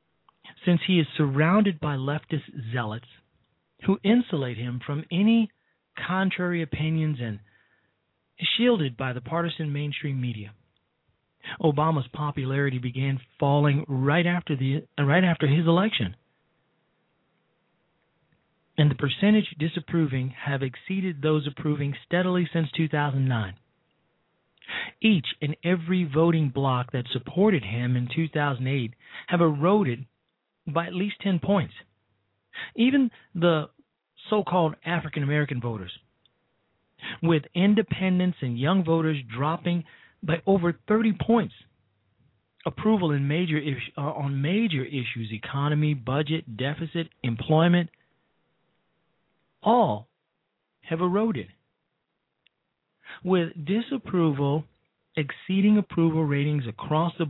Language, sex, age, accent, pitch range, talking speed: English, male, 40-59, American, 135-175 Hz, 105 wpm